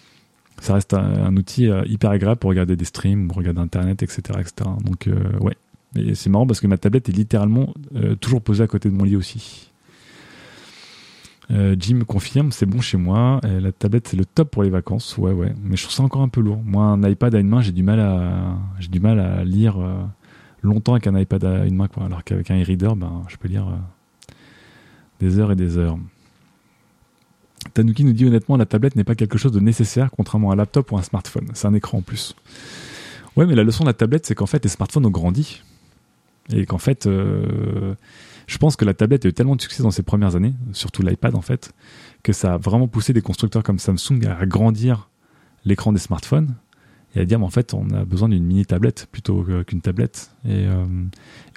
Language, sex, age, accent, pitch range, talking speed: French, male, 30-49, French, 95-115 Hz, 225 wpm